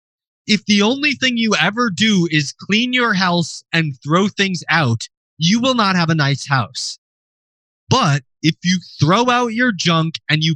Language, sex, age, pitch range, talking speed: English, male, 30-49, 145-205 Hz, 175 wpm